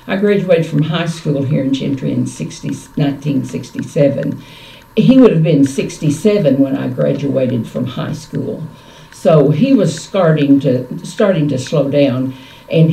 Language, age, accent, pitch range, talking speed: English, 50-69, American, 140-195 Hz, 140 wpm